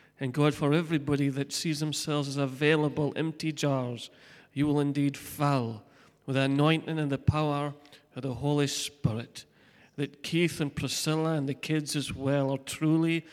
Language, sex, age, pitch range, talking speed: English, male, 40-59, 140-160 Hz, 160 wpm